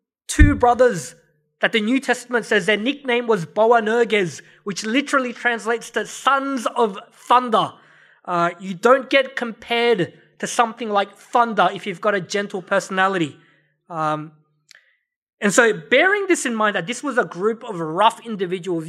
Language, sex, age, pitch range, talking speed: English, male, 20-39, 200-275 Hz, 155 wpm